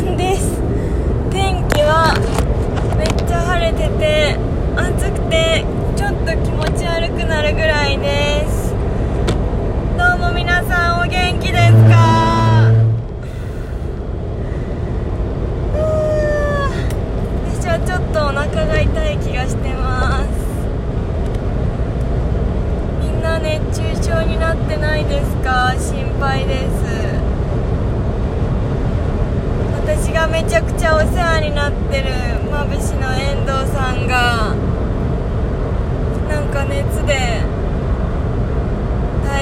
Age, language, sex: 20-39, Japanese, female